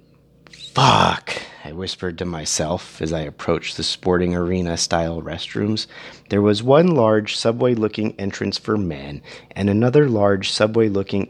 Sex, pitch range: male, 90-115 Hz